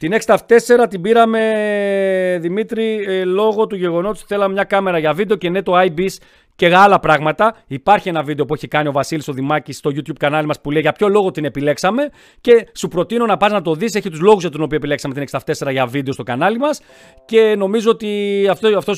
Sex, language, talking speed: male, Greek, 210 wpm